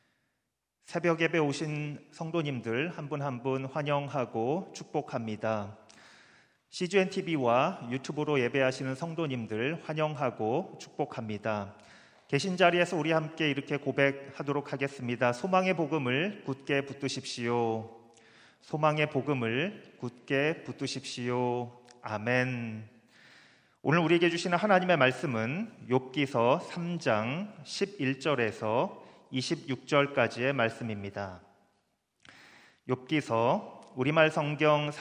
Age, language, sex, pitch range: 40-59, Korean, male, 115-150 Hz